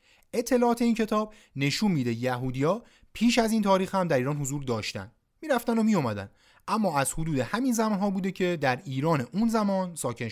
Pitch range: 125-195 Hz